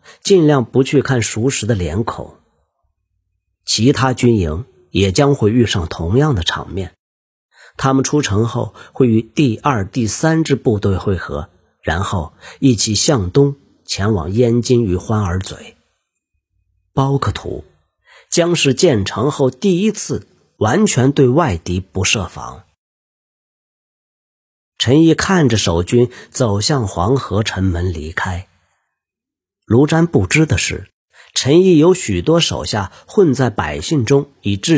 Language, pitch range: Chinese, 95-145 Hz